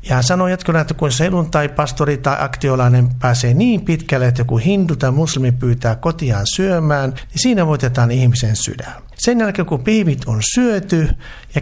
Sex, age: male, 60-79